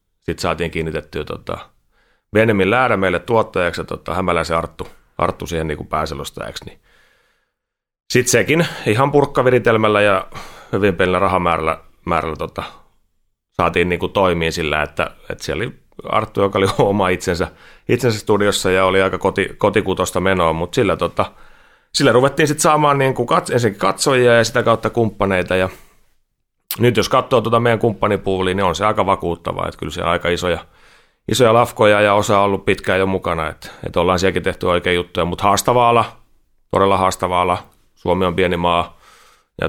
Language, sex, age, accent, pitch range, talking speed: Finnish, male, 30-49, native, 85-105 Hz, 160 wpm